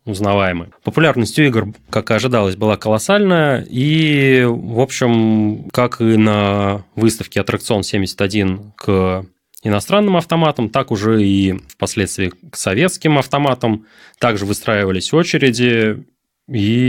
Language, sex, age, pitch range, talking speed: Russian, male, 20-39, 95-120 Hz, 105 wpm